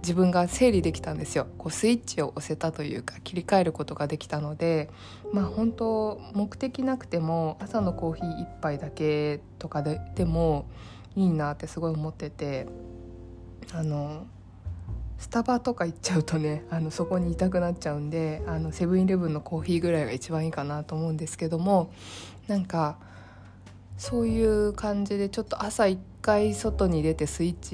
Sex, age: female, 20-39